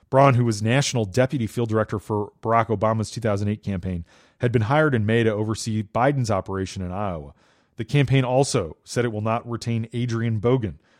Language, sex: English, male